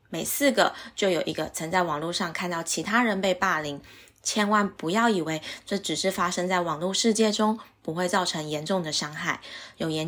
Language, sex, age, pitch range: Chinese, female, 20-39, 165-210 Hz